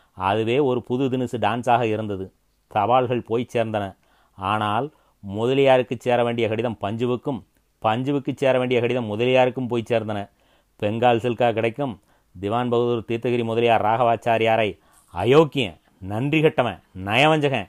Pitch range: 110-130 Hz